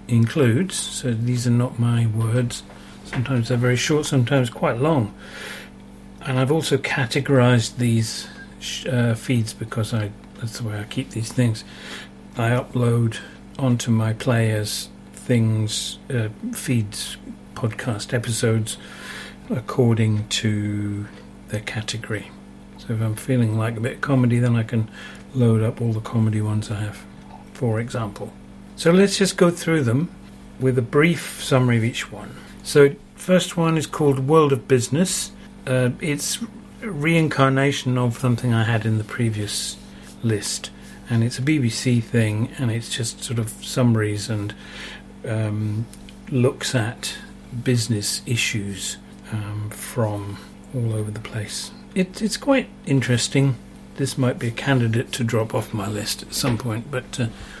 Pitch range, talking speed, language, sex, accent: 110-130 Hz, 150 wpm, English, male, British